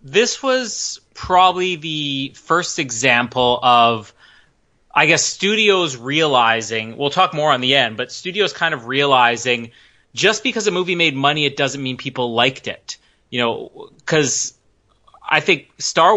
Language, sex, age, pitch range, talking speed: English, male, 30-49, 125-155 Hz, 150 wpm